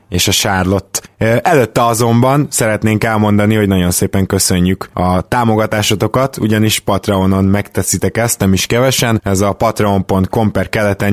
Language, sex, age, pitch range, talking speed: Hungarian, male, 20-39, 100-115 Hz, 135 wpm